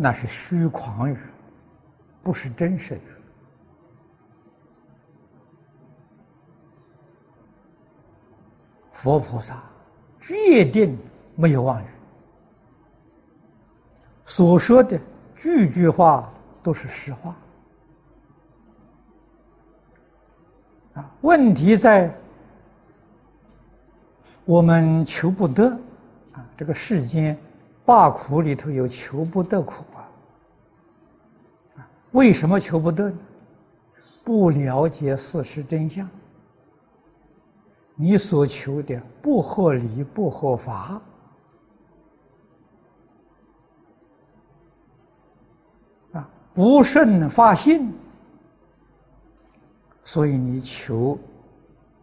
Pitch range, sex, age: 130-185 Hz, male, 60-79